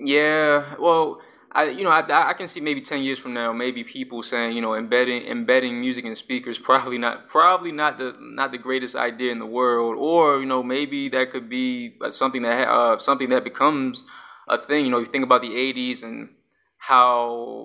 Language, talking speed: English, 205 wpm